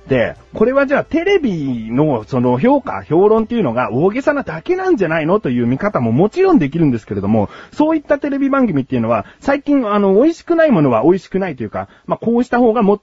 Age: 40-59